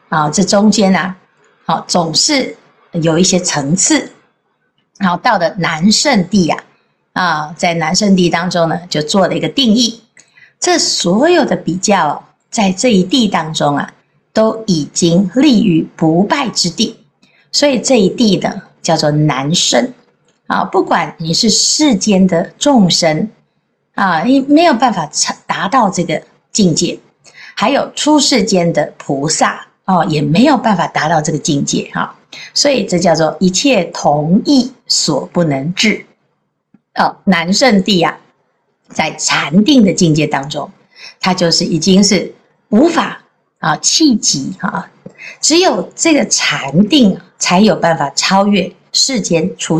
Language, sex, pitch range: Chinese, female, 165-230 Hz